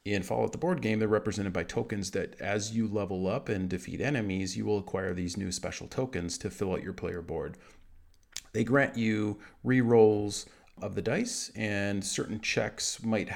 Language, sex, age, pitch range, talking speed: English, male, 40-59, 95-115 Hz, 185 wpm